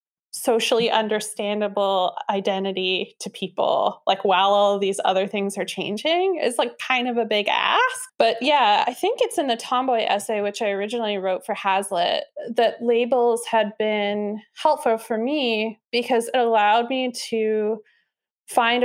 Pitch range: 200-240 Hz